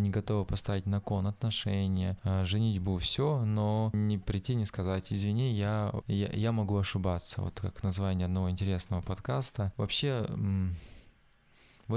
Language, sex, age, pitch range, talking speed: Russian, male, 20-39, 95-110 Hz, 140 wpm